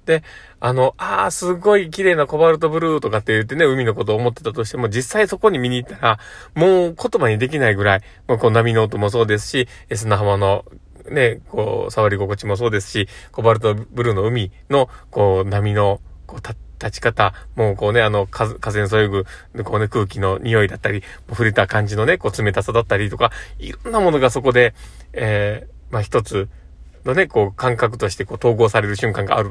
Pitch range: 105-135 Hz